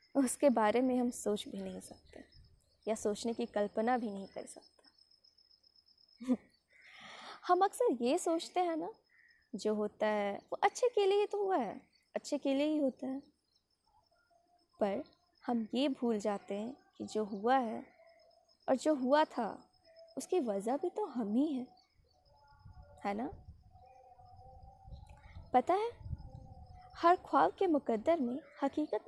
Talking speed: 140 wpm